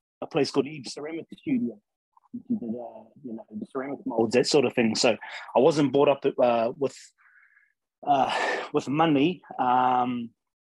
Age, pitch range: 30-49, 125-155 Hz